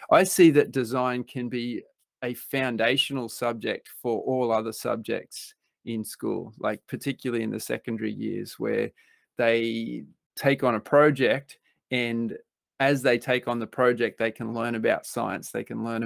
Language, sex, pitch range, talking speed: English, male, 115-135 Hz, 155 wpm